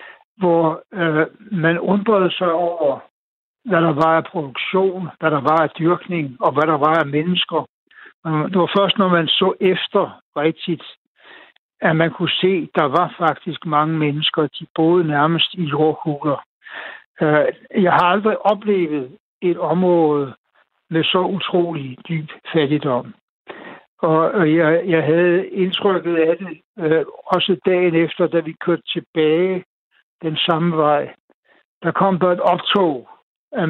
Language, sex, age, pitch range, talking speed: Danish, male, 60-79, 155-185 Hz, 135 wpm